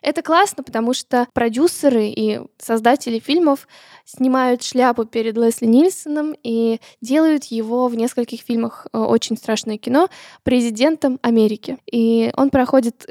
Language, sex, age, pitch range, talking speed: Russian, female, 10-29, 230-275 Hz, 130 wpm